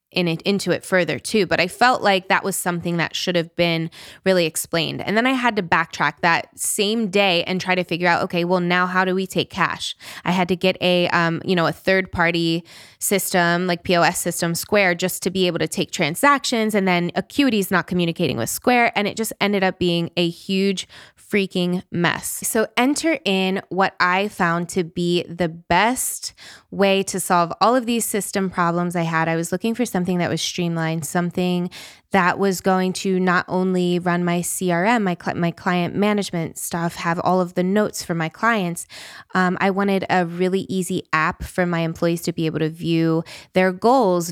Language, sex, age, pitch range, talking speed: English, female, 20-39, 170-195 Hz, 205 wpm